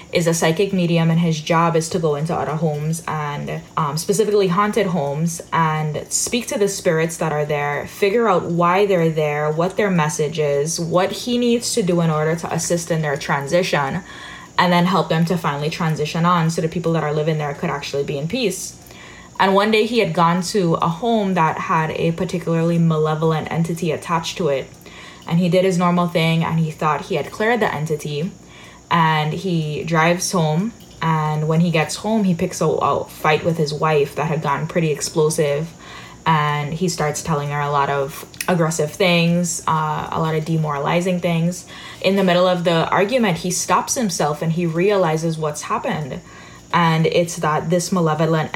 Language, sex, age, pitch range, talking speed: English, female, 10-29, 155-180 Hz, 195 wpm